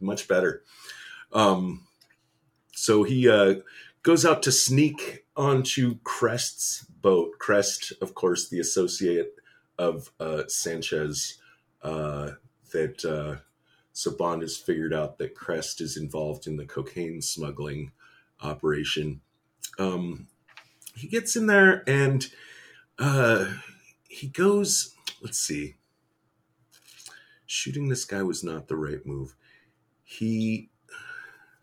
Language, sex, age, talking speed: English, male, 40-59, 110 wpm